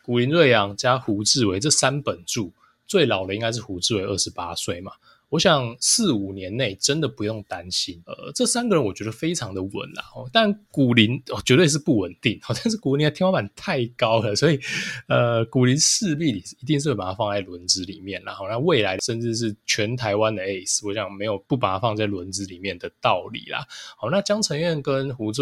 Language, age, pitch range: Chinese, 20-39, 100-135 Hz